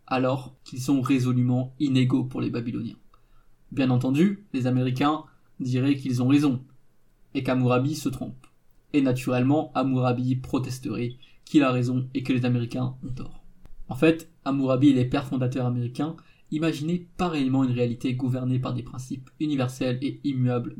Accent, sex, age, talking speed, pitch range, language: French, male, 20-39, 150 wpm, 130-145 Hz, French